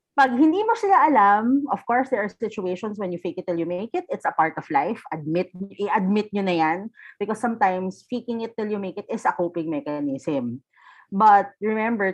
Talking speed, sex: 210 wpm, female